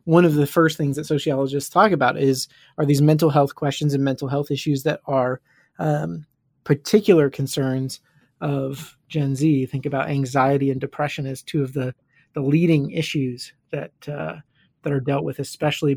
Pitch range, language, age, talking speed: 140-160 Hz, English, 30-49, 175 wpm